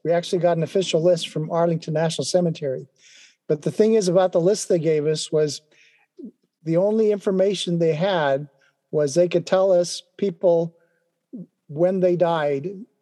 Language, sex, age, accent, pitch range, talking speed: English, male, 50-69, American, 155-180 Hz, 160 wpm